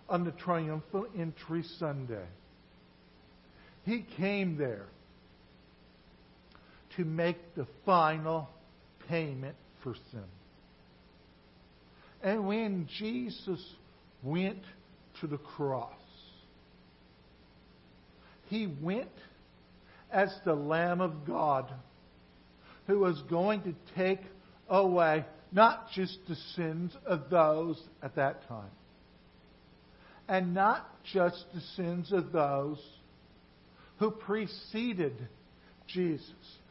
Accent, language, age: American, English, 60-79